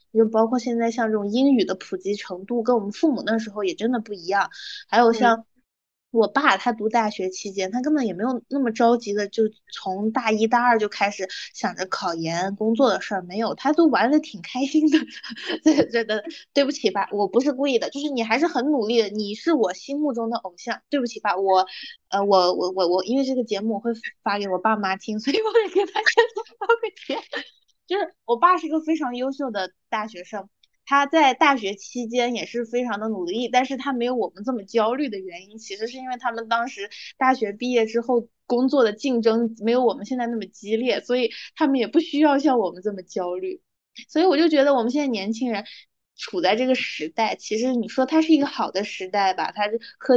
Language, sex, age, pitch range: Chinese, female, 20-39, 210-275 Hz